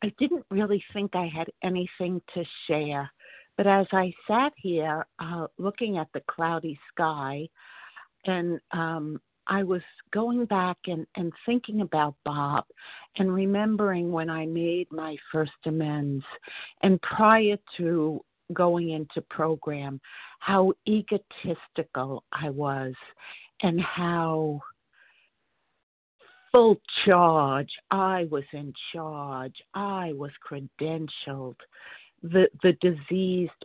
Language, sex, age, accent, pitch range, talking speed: English, female, 50-69, American, 150-185 Hz, 110 wpm